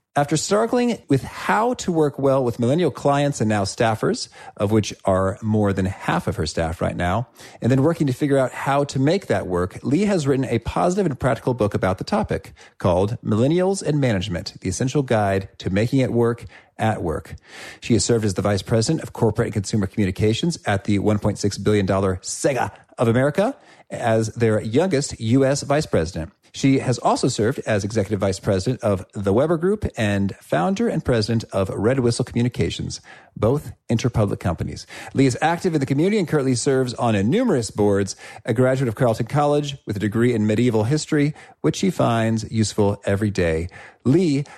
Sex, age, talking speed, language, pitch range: male, 40-59, 185 wpm, English, 105-140 Hz